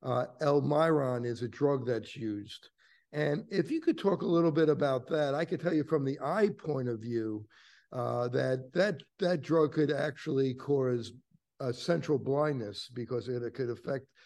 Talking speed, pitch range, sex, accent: 175 wpm, 125-155 Hz, male, American